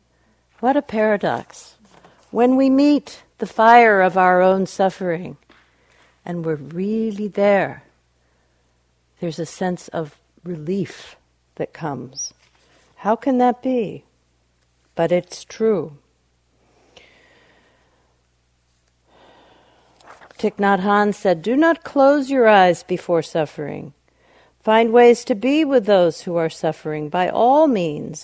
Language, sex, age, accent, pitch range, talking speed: English, female, 50-69, American, 150-220 Hz, 115 wpm